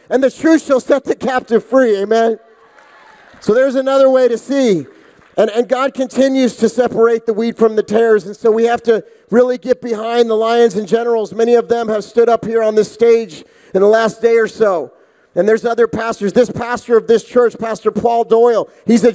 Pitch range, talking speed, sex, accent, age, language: 230-270 Hz, 215 wpm, male, American, 40-59, English